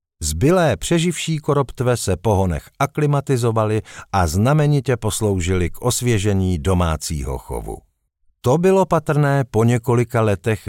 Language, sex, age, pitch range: Czech, male, 50-69, 95-125 Hz